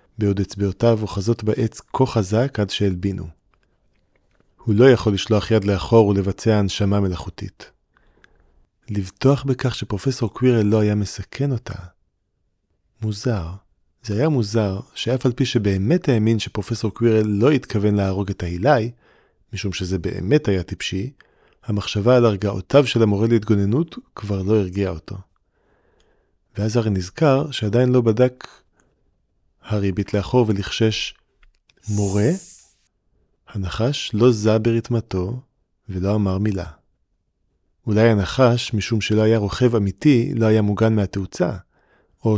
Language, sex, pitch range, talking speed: Hebrew, male, 100-115 Hz, 120 wpm